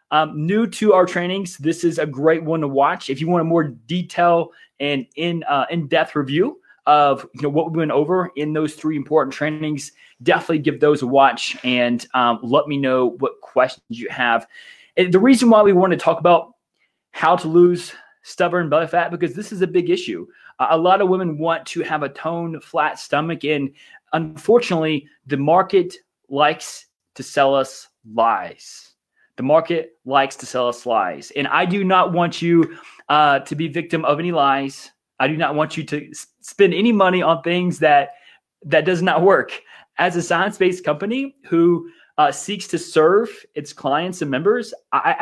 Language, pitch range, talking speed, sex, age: English, 150-185 Hz, 185 wpm, male, 20-39